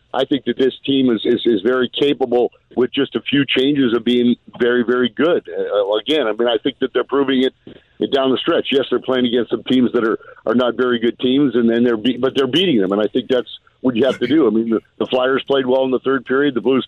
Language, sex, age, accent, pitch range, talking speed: English, male, 50-69, American, 115-130 Hz, 275 wpm